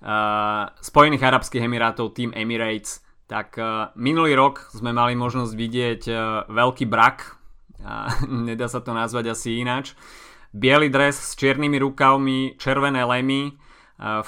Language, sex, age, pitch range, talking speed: Slovak, male, 20-39, 110-130 Hz, 135 wpm